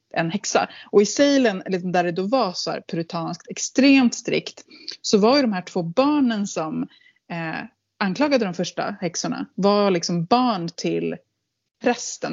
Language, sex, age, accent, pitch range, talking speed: Swedish, female, 20-39, native, 170-230 Hz, 150 wpm